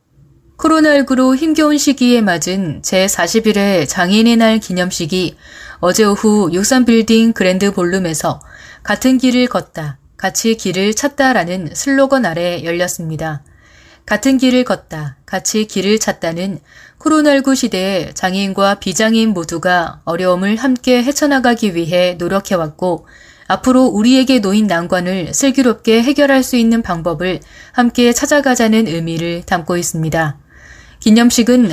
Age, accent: 20-39, native